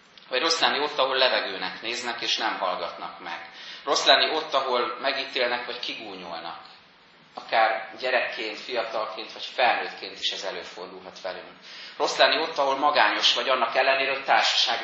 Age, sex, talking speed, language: 30-49, male, 150 wpm, Hungarian